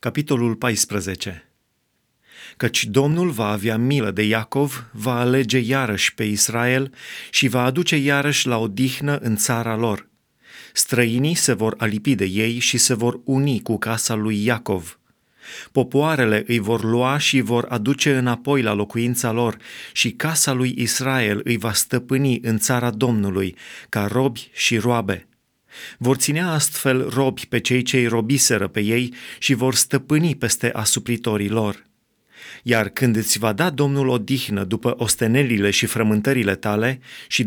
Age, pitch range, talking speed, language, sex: 30-49, 110-135 Hz, 145 wpm, Romanian, male